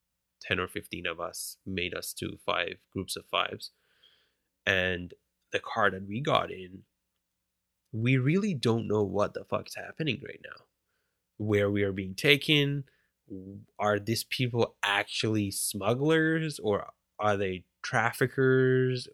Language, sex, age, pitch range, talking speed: English, male, 20-39, 95-120 Hz, 135 wpm